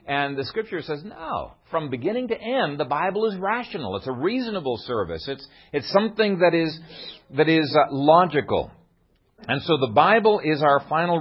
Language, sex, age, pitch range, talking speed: English, male, 50-69, 120-170 Hz, 175 wpm